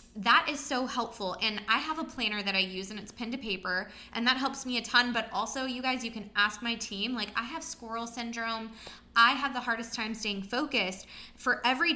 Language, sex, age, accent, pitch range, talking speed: English, female, 20-39, American, 200-240 Hz, 230 wpm